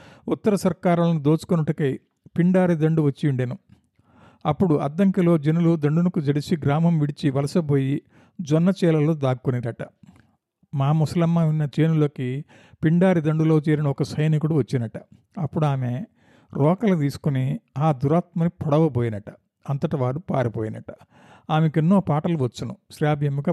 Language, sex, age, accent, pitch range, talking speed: Telugu, male, 50-69, native, 140-170 Hz, 105 wpm